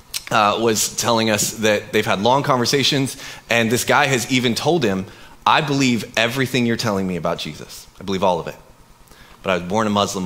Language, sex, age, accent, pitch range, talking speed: English, male, 30-49, American, 95-120 Hz, 205 wpm